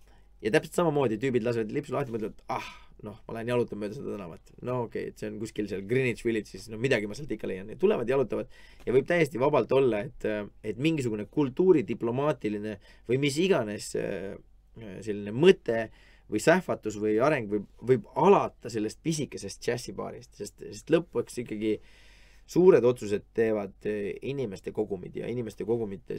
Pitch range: 105-120 Hz